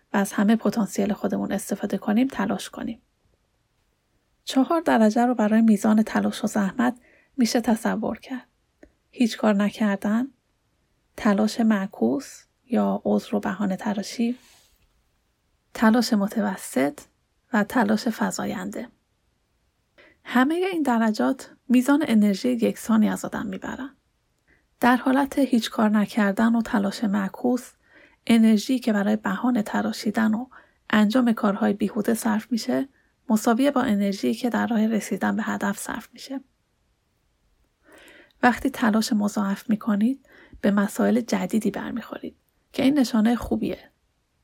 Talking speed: 115 wpm